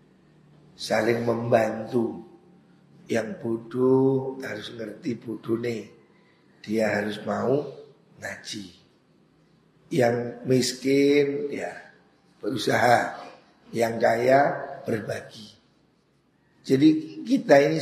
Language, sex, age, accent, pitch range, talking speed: Indonesian, male, 50-69, native, 125-165 Hz, 70 wpm